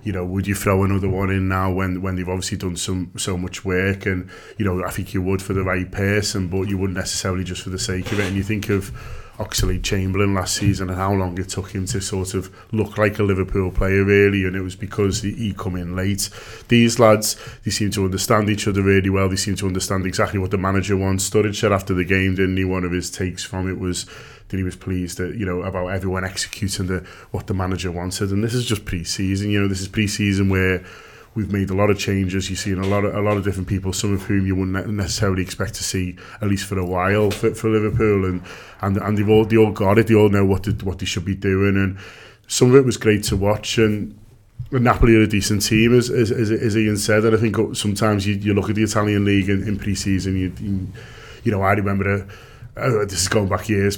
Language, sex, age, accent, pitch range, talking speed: English, male, 20-39, British, 95-105 Hz, 250 wpm